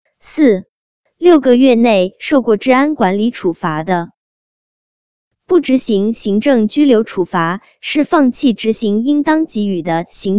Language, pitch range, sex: Chinese, 190-280 Hz, male